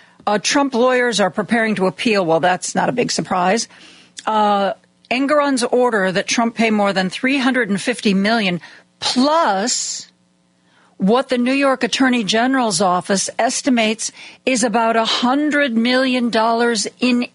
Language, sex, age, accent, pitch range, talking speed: English, female, 50-69, American, 185-235 Hz, 130 wpm